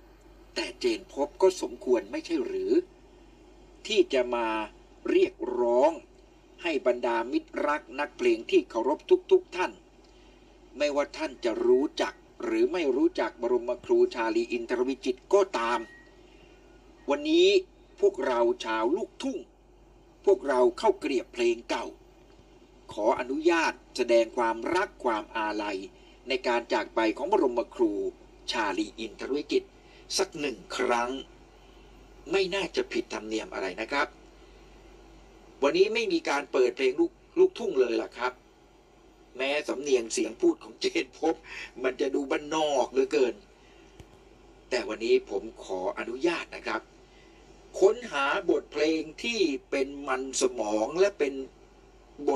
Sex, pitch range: male, 305-370 Hz